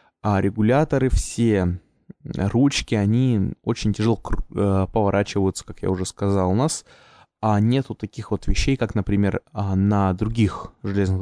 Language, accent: Russian, native